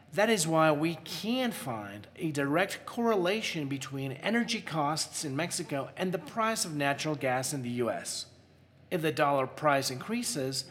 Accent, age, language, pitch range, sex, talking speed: American, 40-59, English, 135-175 Hz, male, 155 wpm